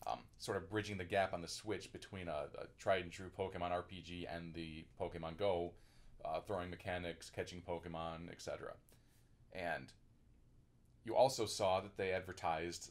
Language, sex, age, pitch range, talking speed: English, male, 30-49, 85-105 Hz, 155 wpm